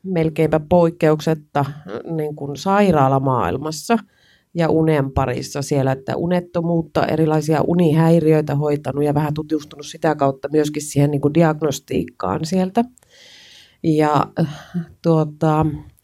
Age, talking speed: 30-49, 90 wpm